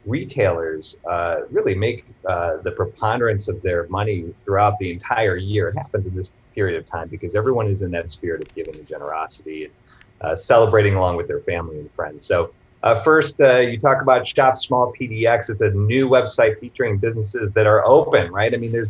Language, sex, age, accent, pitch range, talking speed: English, male, 30-49, American, 100-135 Hz, 200 wpm